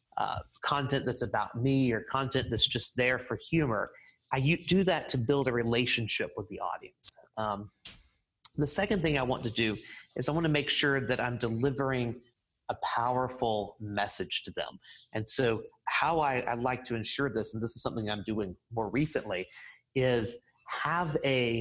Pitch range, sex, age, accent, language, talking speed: 115-140 Hz, male, 30-49, American, English, 180 wpm